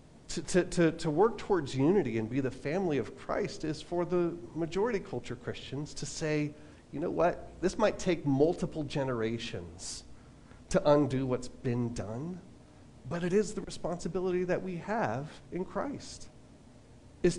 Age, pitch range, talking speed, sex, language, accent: 40-59, 130-180 Hz, 150 wpm, male, English, American